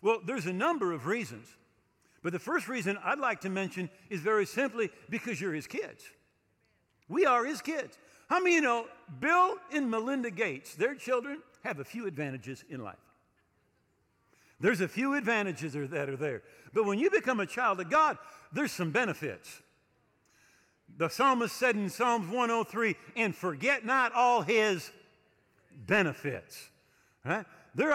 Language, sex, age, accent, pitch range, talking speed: English, male, 50-69, American, 175-250 Hz, 155 wpm